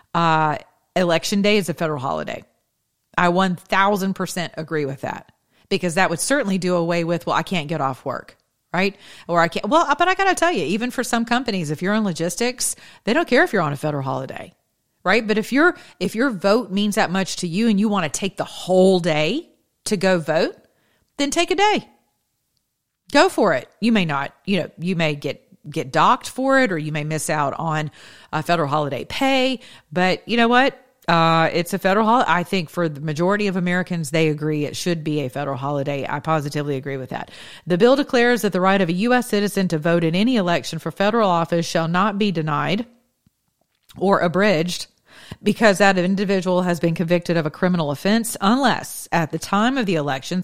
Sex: female